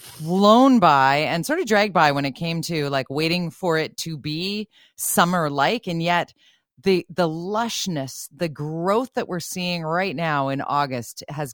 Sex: female